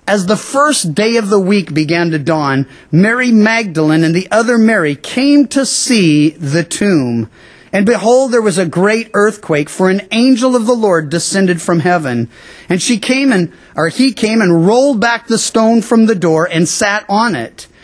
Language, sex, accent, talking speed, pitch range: English, male, American, 190 wpm, 165-235 Hz